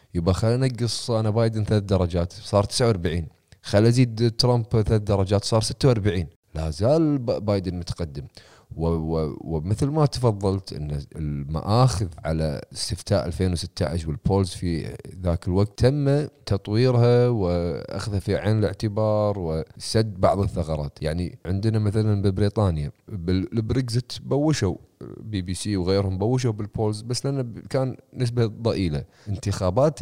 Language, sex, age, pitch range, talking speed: Arabic, male, 30-49, 90-115 Hz, 120 wpm